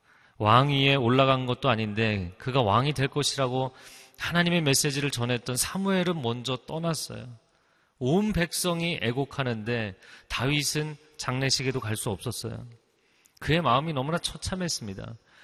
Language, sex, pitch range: Korean, male, 120-160 Hz